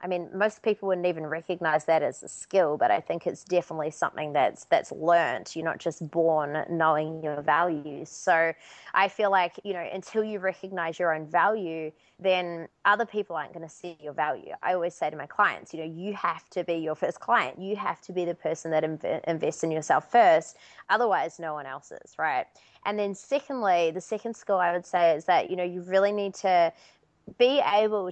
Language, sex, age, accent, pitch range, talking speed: English, female, 20-39, Australian, 165-190 Hz, 215 wpm